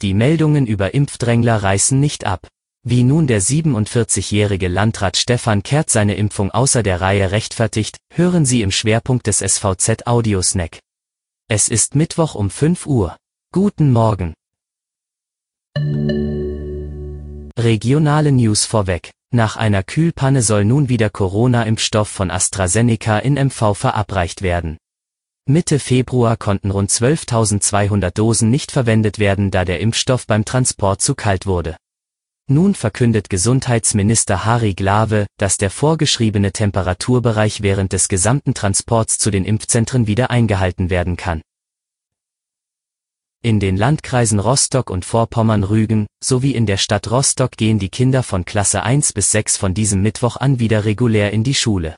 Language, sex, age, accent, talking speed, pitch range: German, male, 30-49, German, 135 wpm, 100-125 Hz